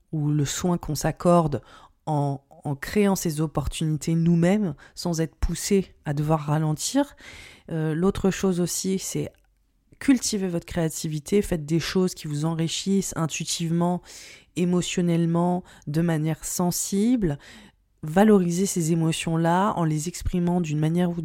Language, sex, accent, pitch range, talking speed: French, female, French, 160-190 Hz, 125 wpm